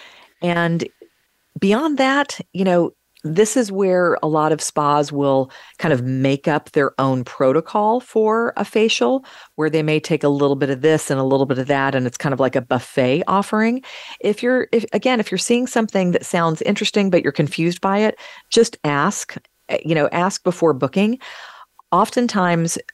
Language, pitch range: English, 140-195 Hz